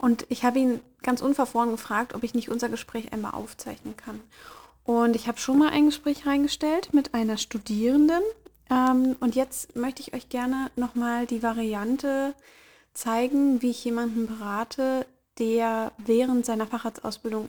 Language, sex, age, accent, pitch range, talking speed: German, female, 30-49, German, 225-260 Hz, 150 wpm